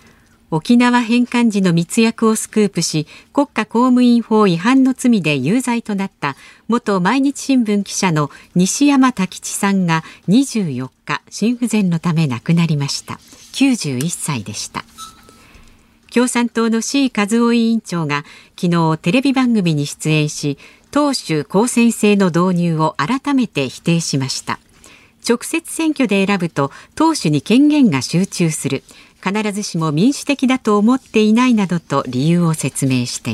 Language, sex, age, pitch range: Japanese, female, 50-69, 155-245 Hz